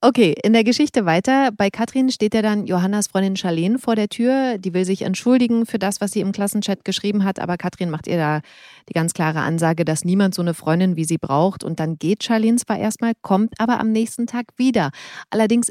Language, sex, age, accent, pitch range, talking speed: German, female, 30-49, German, 170-220 Hz, 220 wpm